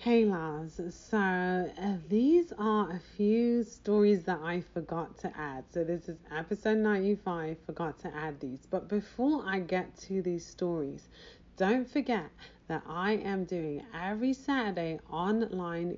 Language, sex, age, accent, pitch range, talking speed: English, female, 30-49, British, 170-225 Hz, 150 wpm